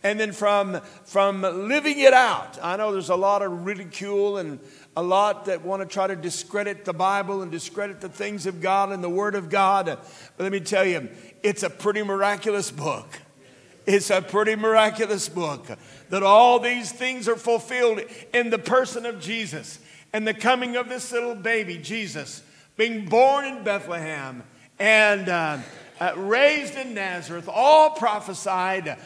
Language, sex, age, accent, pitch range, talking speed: English, male, 50-69, American, 155-210 Hz, 170 wpm